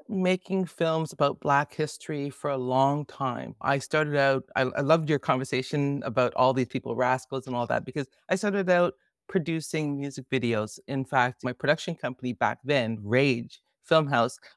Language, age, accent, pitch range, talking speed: English, 30-49, American, 140-200 Hz, 170 wpm